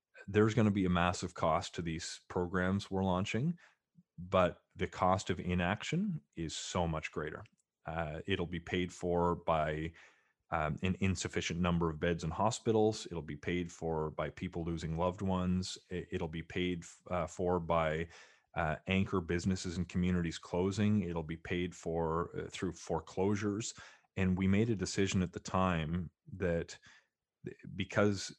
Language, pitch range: English, 85-100 Hz